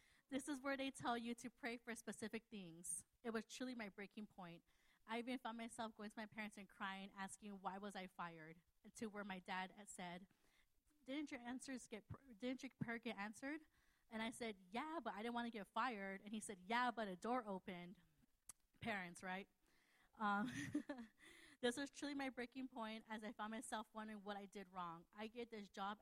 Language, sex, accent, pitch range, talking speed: English, female, American, 195-230 Hz, 205 wpm